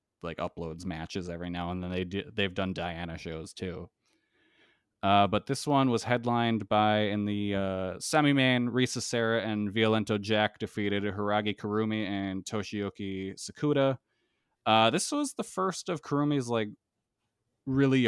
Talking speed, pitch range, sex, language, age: 150 wpm, 100-125 Hz, male, English, 20-39